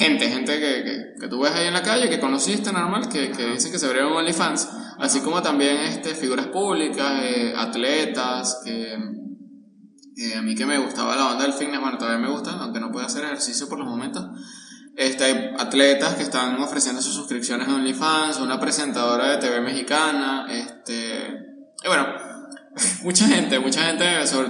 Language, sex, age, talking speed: Spanish, male, 20-39, 175 wpm